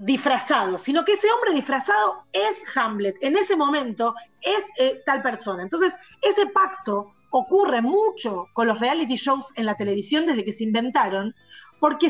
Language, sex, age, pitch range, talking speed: Italian, female, 30-49, 230-320 Hz, 155 wpm